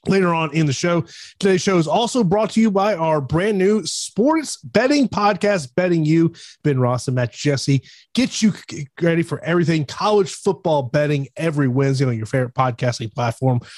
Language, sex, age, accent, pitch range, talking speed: English, male, 30-49, American, 135-175 Hz, 180 wpm